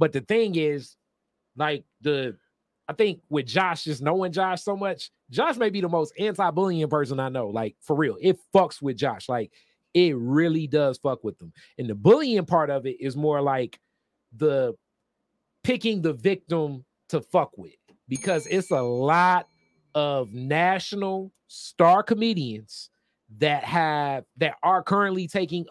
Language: English